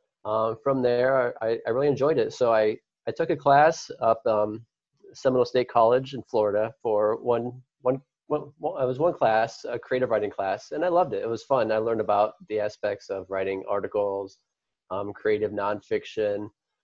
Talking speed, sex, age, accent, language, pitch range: 185 wpm, male, 20-39, American, English, 105-140 Hz